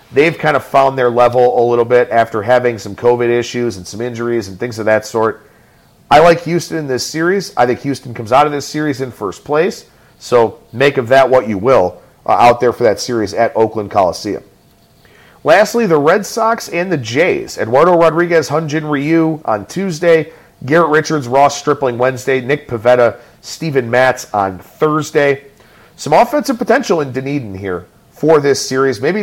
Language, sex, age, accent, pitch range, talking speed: English, male, 40-59, American, 120-160 Hz, 185 wpm